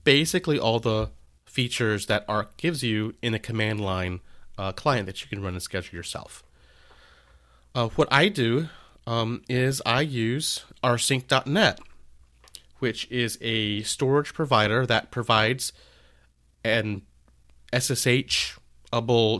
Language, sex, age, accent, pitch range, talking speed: English, male, 30-49, American, 90-125 Hz, 120 wpm